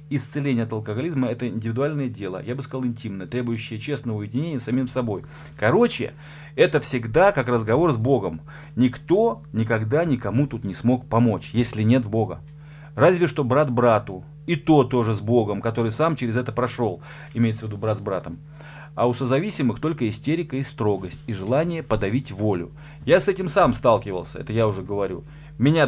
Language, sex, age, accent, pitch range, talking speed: Russian, male, 30-49, native, 115-150 Hz, 175 wpm